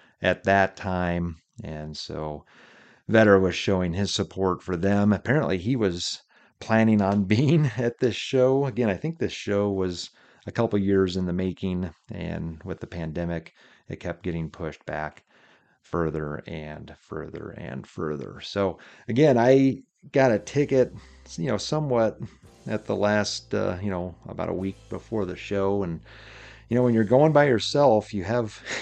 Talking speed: 160 wpm